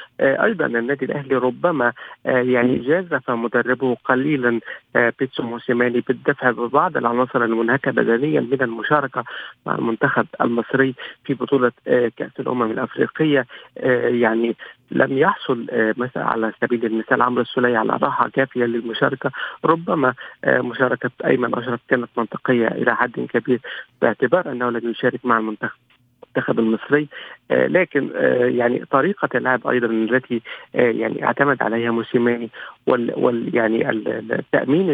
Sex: male